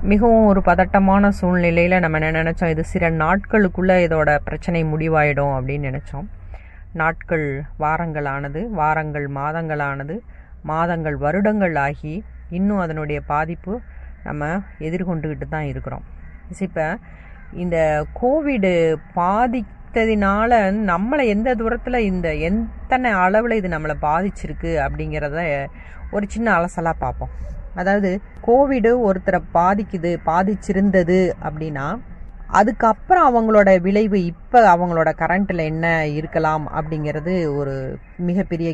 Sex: female